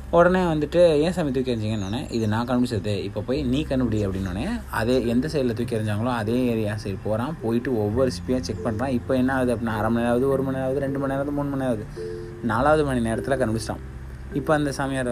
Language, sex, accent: Tamil, male, native